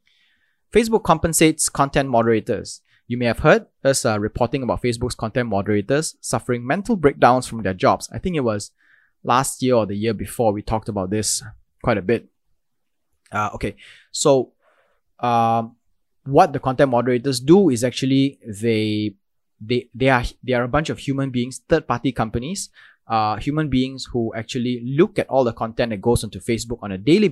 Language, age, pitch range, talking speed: English, 20-39, 110-135 Hz, 175 wpm